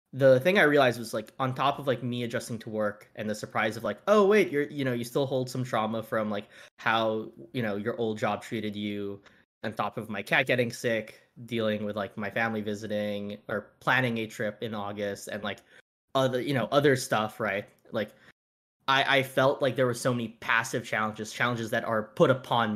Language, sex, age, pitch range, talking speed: English, male, 10-29, 110-135 Hz, 215 wpm